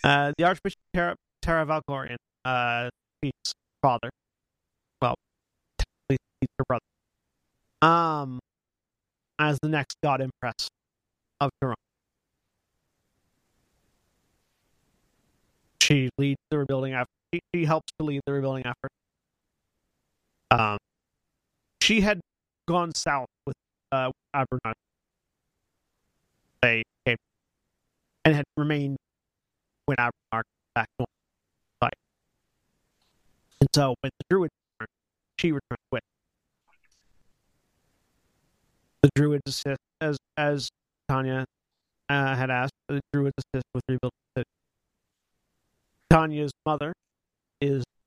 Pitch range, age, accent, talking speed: 130-155 Hz, 30-49, American, 90 wpm